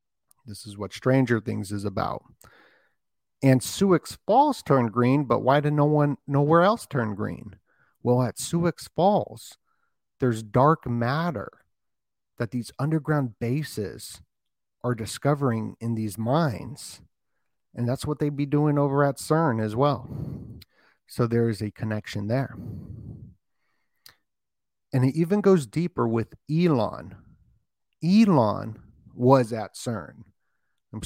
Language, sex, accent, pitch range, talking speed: English, male, American, 110-140 Hz, 130 wpm